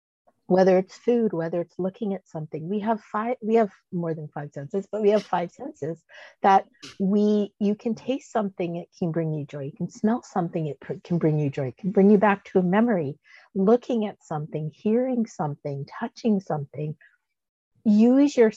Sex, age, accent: female, 50-69, American